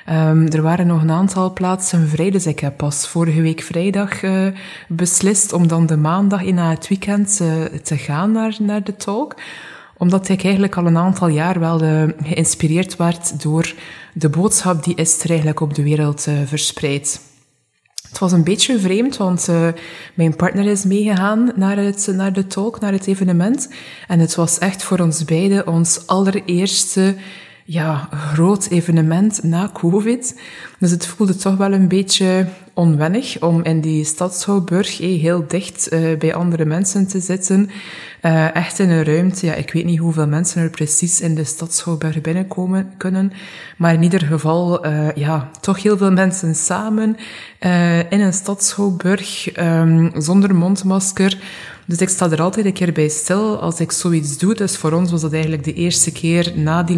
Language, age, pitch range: Dutch, 20-39, 160-195 Hz